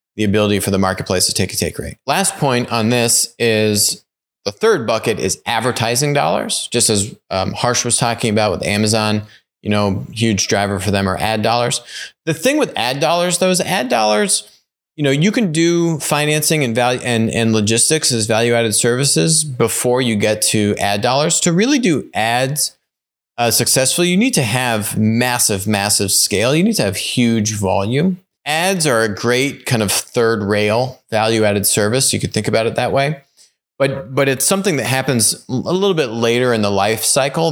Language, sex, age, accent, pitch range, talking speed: English, male, 30-49, American, 105-135 Hz, 190 wpm